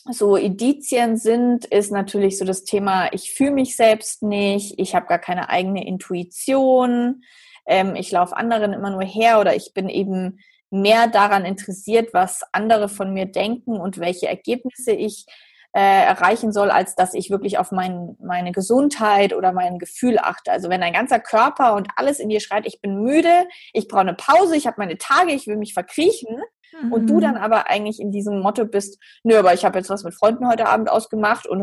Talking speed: 195 wpm